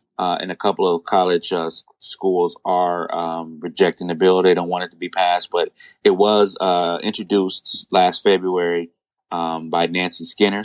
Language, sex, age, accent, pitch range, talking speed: English, male, 20-39, American, 85-105 Hz, 175 wpm